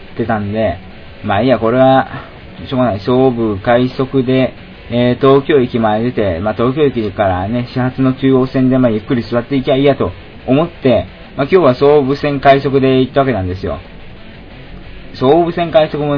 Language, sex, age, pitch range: Japanese, male, 20-39, 105-135 Hz